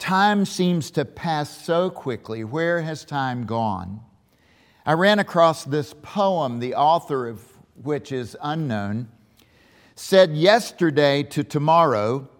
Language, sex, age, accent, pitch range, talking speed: English, male, 50-69, American, 135-185 Hz, 120 wpm